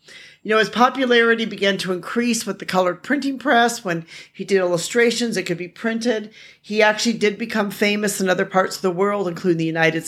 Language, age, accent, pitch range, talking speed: English, 40-59, American, 175-215 Hz, 200 wpm